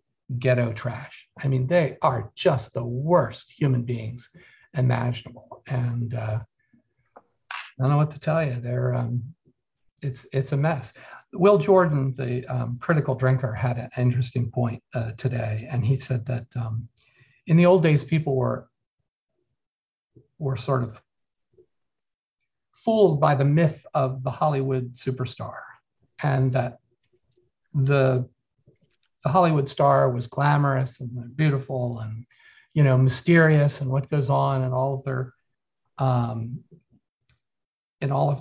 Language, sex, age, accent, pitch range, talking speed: English, male, 50-69, American, 125-140 Hz, 135 wpm